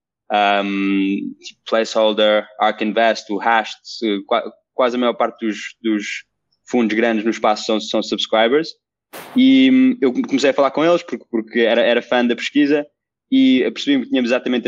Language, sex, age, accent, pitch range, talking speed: Portuguese, male, 20-39, Brazilian, 110-125 Hz, 155 wpm